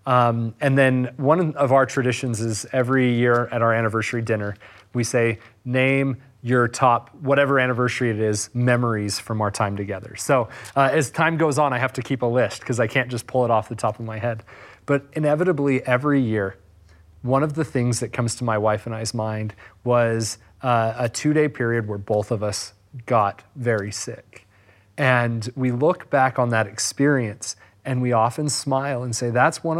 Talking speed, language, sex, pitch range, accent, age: 195 wpm, English, male, 110-135 Hz, American, 30-49